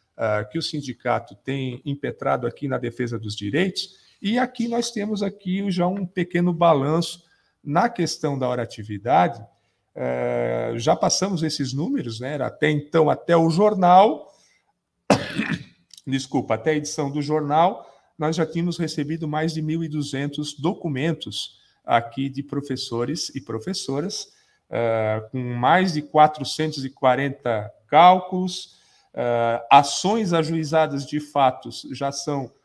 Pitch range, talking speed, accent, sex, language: 130-170 Hz, 120 wpm, Brazilian, male, Portuguese